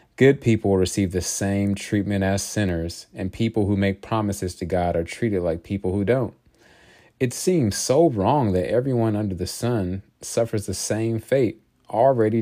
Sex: male